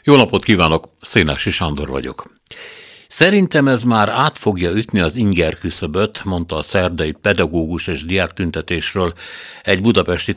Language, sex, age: Hungarian, male, 60-79